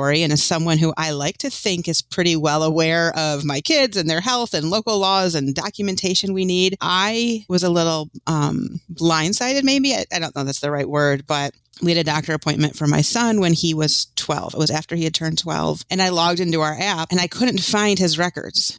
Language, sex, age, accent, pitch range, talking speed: English, female, 30-49, American, 155-200 Hz, 235 wpm